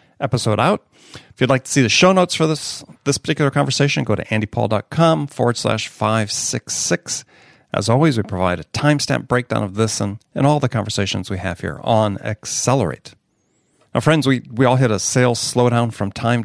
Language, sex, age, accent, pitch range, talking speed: English, male, 40-59, American, 105-145 Hz, 185 wpm